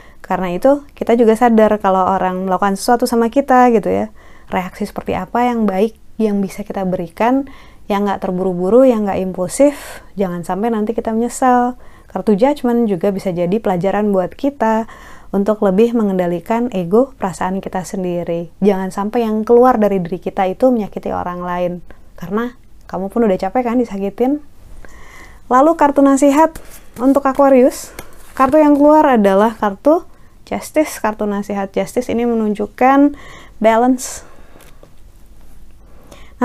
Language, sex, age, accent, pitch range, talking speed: Indonesian, female, 20-39, native, 195-245 Hz, 135 wpm